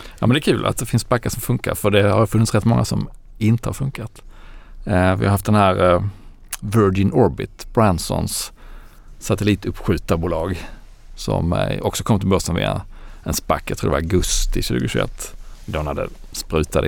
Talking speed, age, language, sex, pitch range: 175 wpm, 40-59, Swedish, male, 90-110 Hz